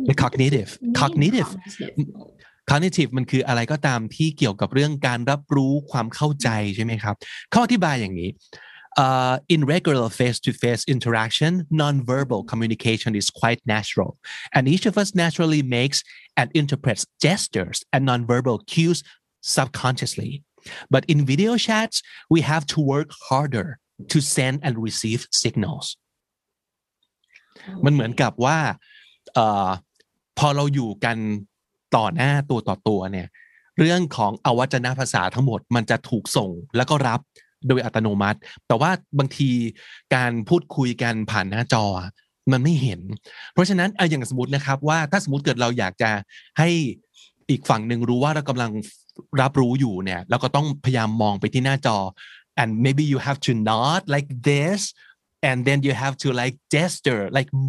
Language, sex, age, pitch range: Thai, male, 30-49, 115-150 Hz